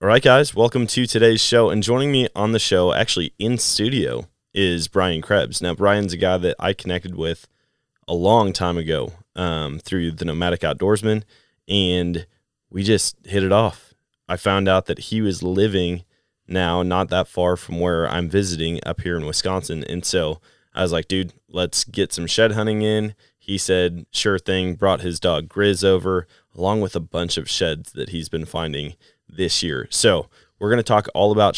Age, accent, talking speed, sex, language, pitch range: 20-39, American, 190 wpm, male, English, 85-100 Hz